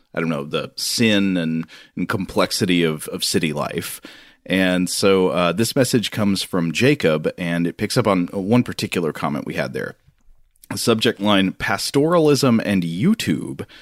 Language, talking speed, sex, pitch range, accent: English, 160 wpm, male, 95-135 Hz, American